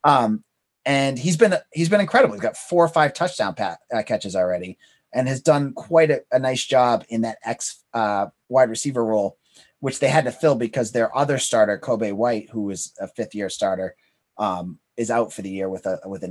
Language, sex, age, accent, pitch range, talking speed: English, male, 30-49, American, 110-155 Hz, 215 wpm